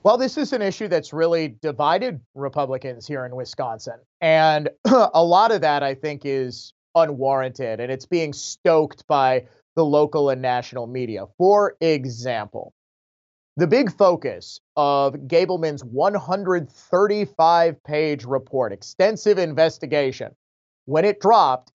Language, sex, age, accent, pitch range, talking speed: English, male, 30-49, American, 135-180 Hz, 125 wpm